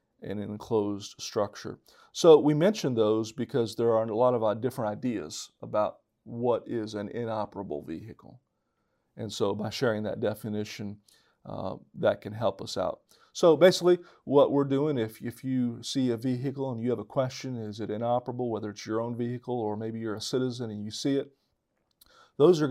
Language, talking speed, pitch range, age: English, 180 wpm, 110-130 Hz, 40-59